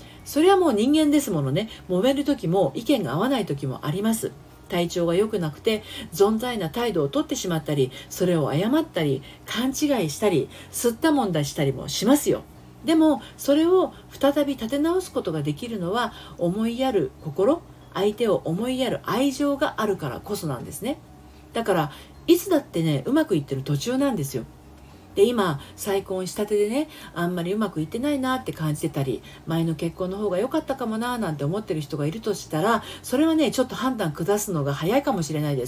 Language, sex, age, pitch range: Japanese, female, 40-59, 165-275 Hz